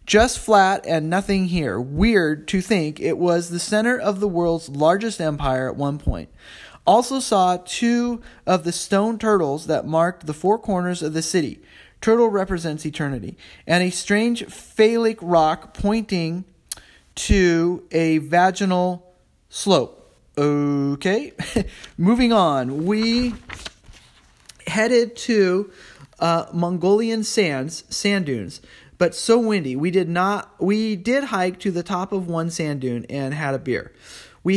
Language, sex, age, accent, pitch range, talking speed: English, male, 30-49, American, 160-205 Hz, 140 wpm